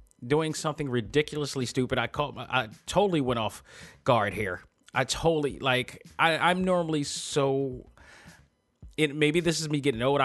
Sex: male